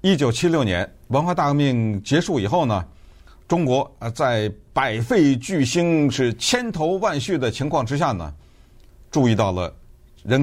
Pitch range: 100-130 Hz